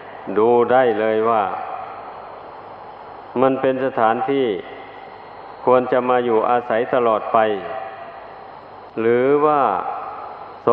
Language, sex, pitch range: Thai, male, 110-125 Hz